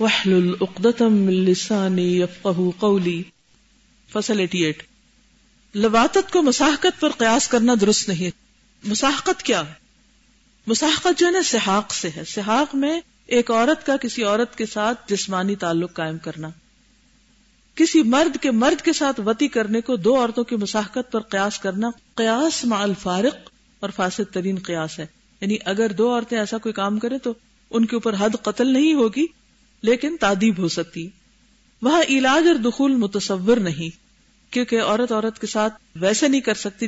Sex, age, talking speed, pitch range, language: female, 50-69, 155 wpm, 195-240 Hz, Urdu